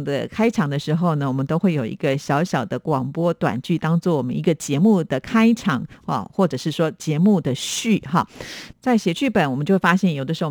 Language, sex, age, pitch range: Chinese, female, 50-69, 145-195 Hz